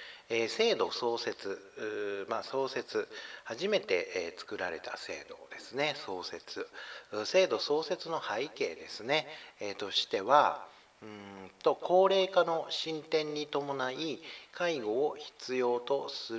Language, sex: Japanese, male